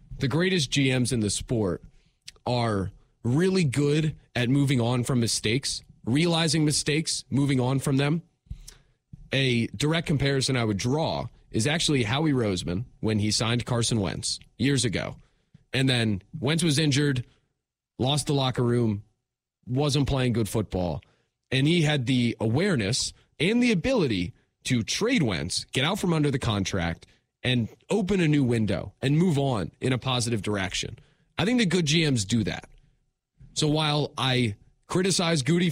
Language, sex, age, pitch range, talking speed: English, male, 30-49, 115-150 Hz, 155 wpm